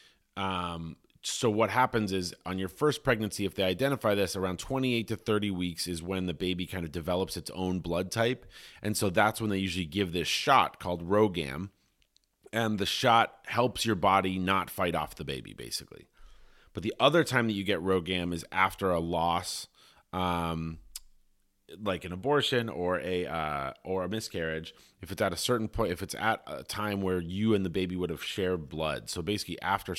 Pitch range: 90-105 Hz